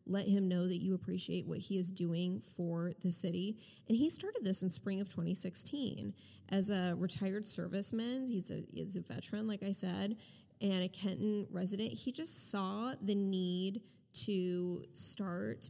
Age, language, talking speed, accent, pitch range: 20-39, English, 170 wpm, American, 180-215 Hz